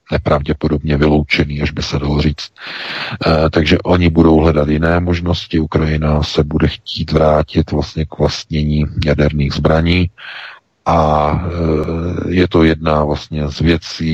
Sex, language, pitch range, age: male, Czech, 75-85 Hz, 40-59